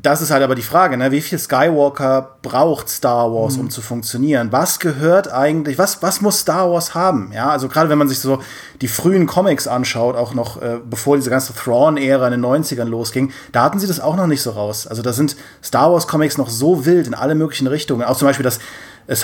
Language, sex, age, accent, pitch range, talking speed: German, male, 30-49, German, 120-145 Hz, 230 wpm